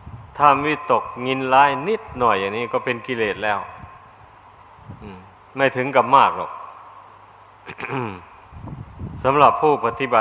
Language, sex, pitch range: Thai, male, 110-135 Hz